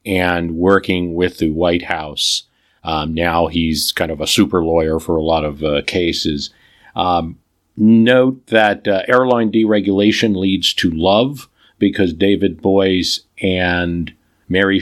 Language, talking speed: English, 140 wpm